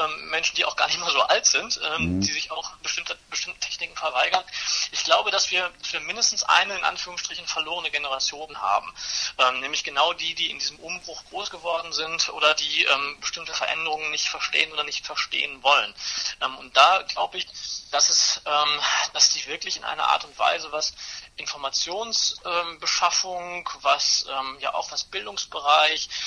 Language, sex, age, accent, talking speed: German, male, 30-49, German, 175 wpm